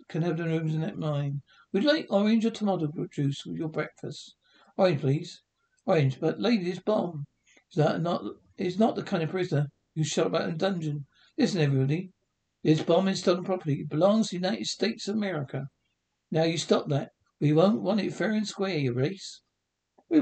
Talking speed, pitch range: 195 wpm, 145-200 Hz